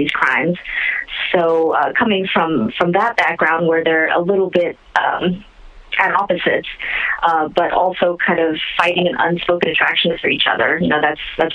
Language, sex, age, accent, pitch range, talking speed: English, female, 30-49, American, 160-180 Hz, 170 wpm